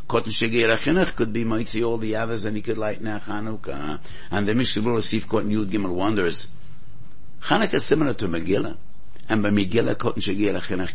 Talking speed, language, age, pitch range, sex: 180 wpm, English, 60-79, 80-110 Hz, male